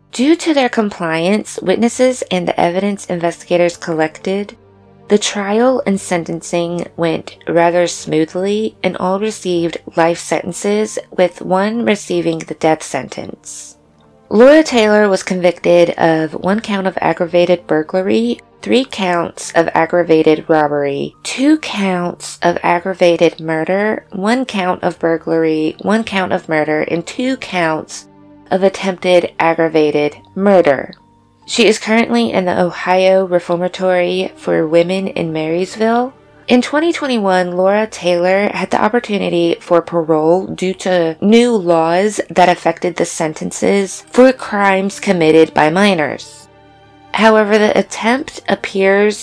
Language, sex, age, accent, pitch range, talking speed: English, female, 20-39, American, 165-205 Hz, 120 wpm